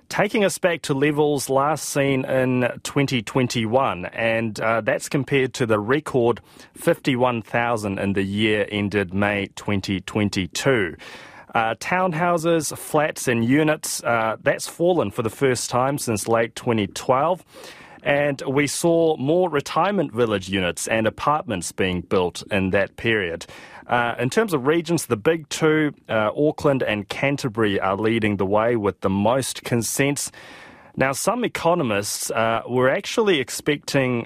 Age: 30-49